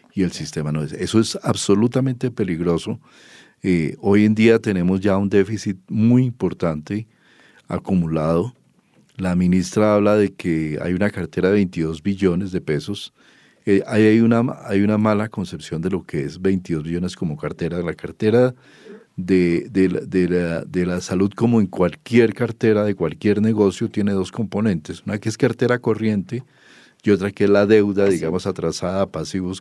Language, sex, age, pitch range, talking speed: English, male, 40-59, 90-115 Hz, 160 wpm